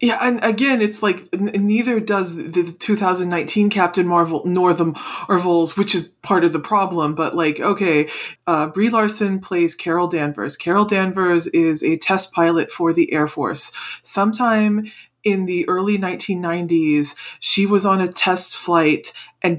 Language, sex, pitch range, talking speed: English, female, 170-205 Hz, 160 wpm